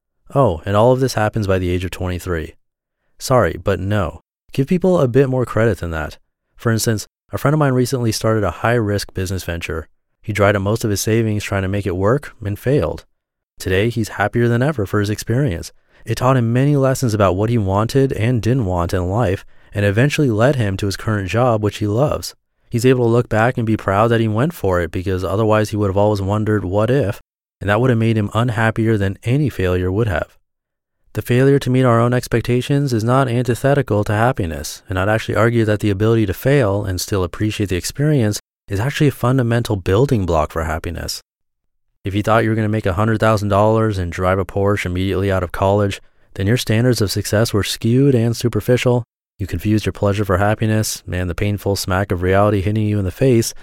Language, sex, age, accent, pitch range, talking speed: English, male, 30-49, American, 100-120 Hz, 215 wpm